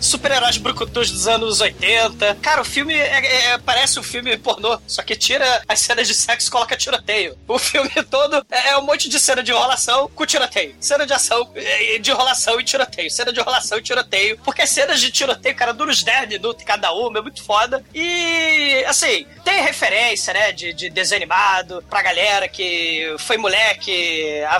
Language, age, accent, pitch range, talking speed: Portuguese, 20-39, Brazilian, 220-295 Hz, 185 wpm